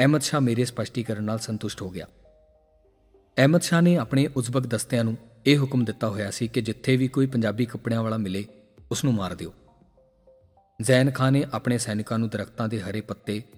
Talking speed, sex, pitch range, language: 170 wpm, male, 100-125 Hz, Punjabi